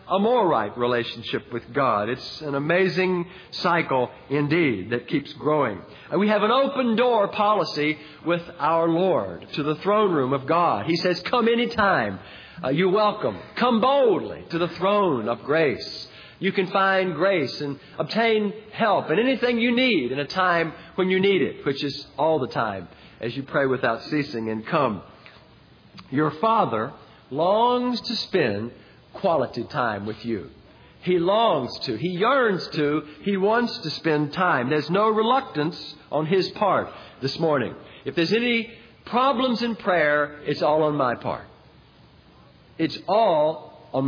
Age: 50-69